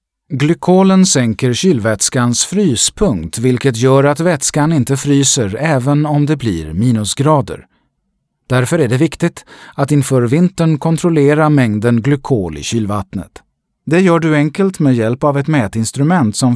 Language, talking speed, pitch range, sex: Swedish, 135 wpm, 110-160 Hz, male